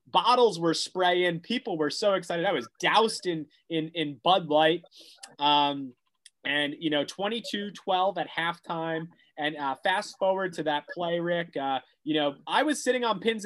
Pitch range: 170-245 Hz